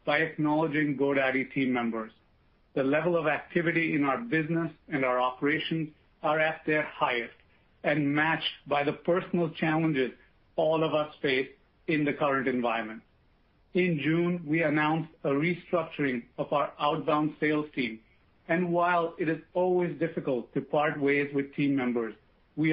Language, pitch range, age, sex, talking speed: English, 135-165 Hz, 50-69, male, 150 wpm